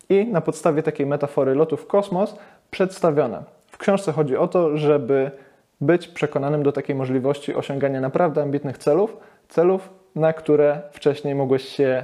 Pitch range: 130-160 Hz